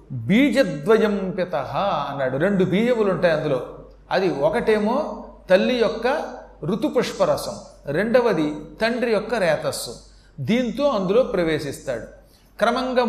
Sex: male